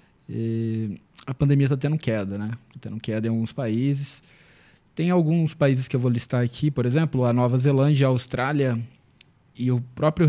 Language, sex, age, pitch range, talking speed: Portuguese, male, 20-39, 120-150 Hz, 175 wpm